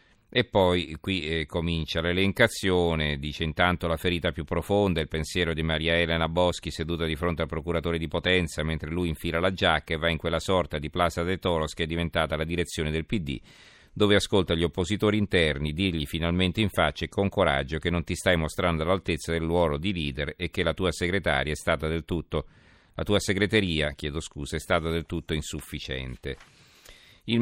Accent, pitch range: native, 80-95 Hz